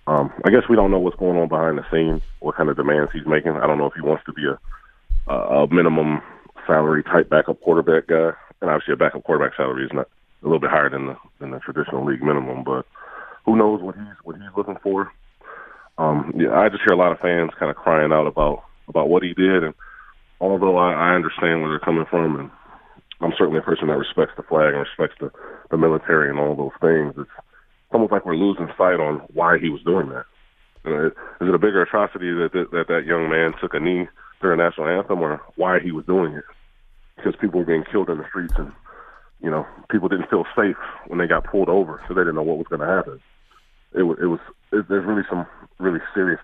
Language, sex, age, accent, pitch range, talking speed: English, male, 30-49, American, 75-90 Hz, 235 wpm